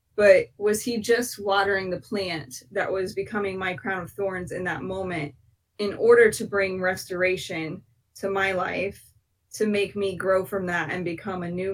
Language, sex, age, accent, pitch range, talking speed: English, female, 20-39, American, 180-205 Hz, 180 wpm